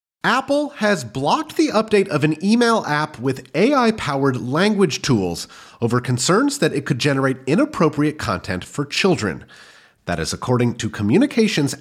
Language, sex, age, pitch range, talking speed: English, male, 30-49, 115-175 Hz, 140 wpm